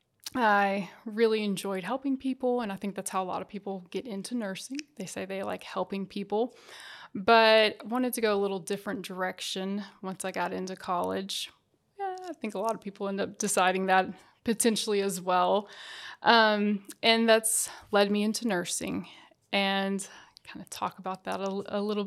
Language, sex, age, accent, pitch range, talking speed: English, female, 20-39, American, 195-230 Hz, 185 wpm